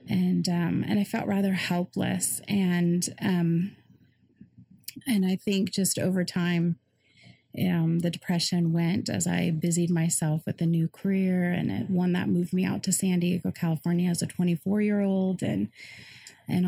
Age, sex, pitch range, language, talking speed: 30-49, female, 175-195 Hz, English, 160 wpm